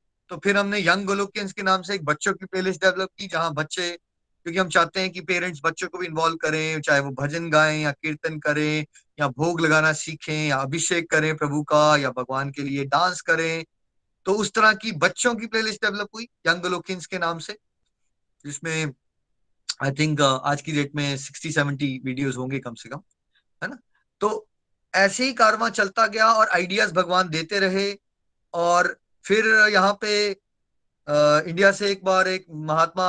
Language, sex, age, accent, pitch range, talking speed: Hindi, male, 20-39, native, 145-190 Hz, 185 wpm